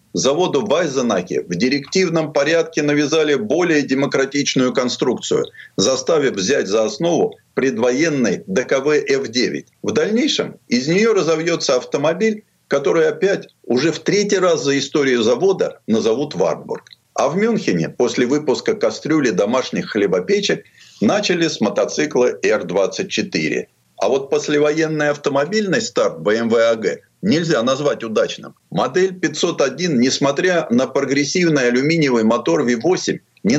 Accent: native